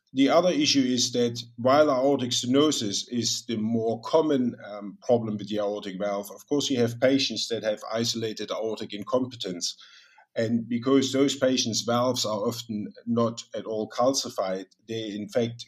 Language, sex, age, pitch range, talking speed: English, male, 50-69, 110-130 Hz, 160 wpm